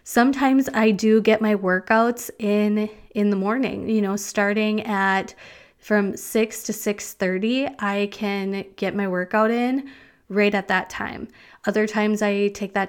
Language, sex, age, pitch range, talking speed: English, female, 20-39, 190-220 Hz, 160 wpm